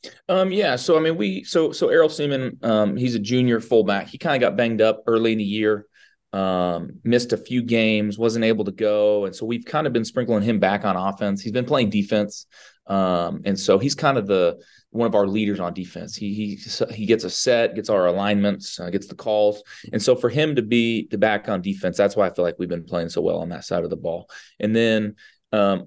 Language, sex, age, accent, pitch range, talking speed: English, male, 30-49, American, 90-110 Hz, 240 wpm